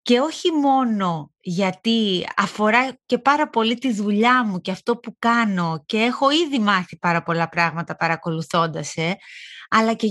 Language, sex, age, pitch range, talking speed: Greek, female, 30-49, 180-250 Hz, 155 wpm